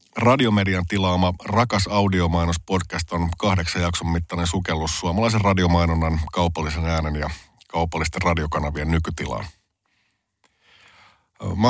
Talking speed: 90 wpm